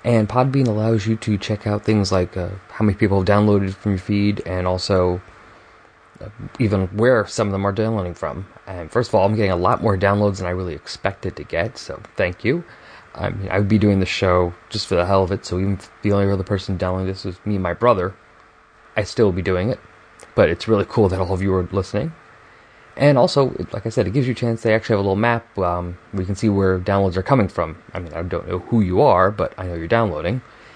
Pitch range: 95-115 Hz